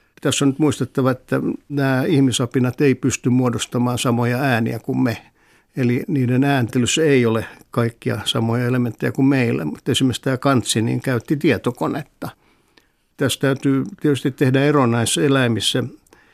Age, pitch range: 60-79, 120-140 Hz